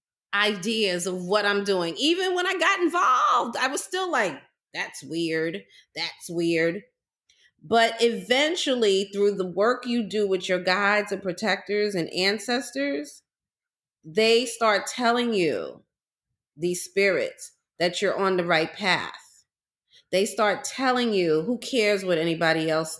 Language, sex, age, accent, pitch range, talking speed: English, female, 30-49, American, 185-255 Hz, 140 wpm